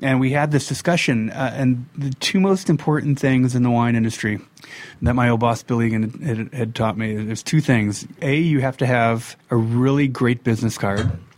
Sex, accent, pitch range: male, American, 115-135 Hz